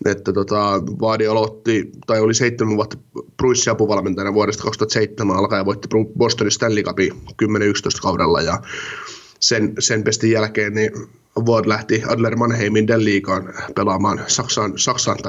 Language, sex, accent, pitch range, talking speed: Finnish, male, native, 105-120 Hz, 120 wpm